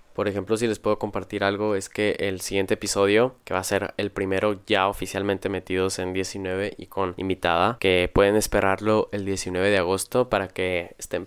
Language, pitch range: Spanish, 95-110 Hz